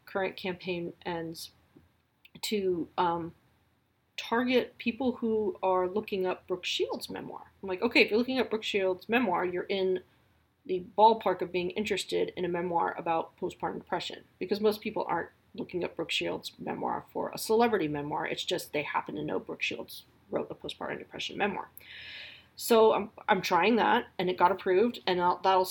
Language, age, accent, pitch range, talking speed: English, 30-49, American, 175-230 Hz, 175 wpm